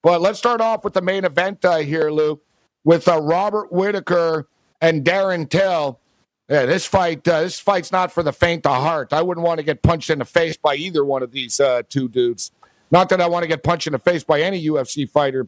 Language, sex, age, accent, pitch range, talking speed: English, male, 60-79, American, 155-185 Hz, 235 wpm